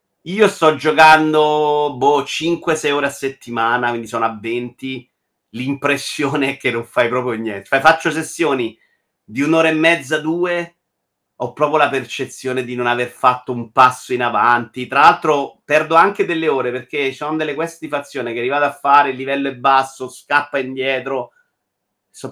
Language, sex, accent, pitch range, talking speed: Italian, male, native, 130-160 Hz, 160 wpm